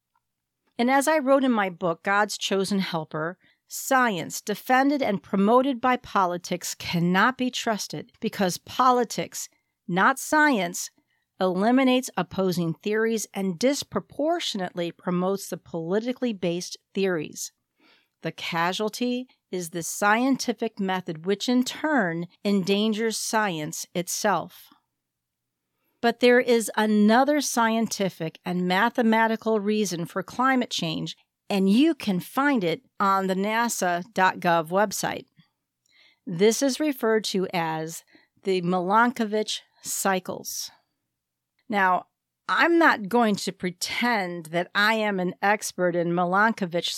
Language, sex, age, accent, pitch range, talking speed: English, female, 50-69, American, 180-245 Hz, 110 wpm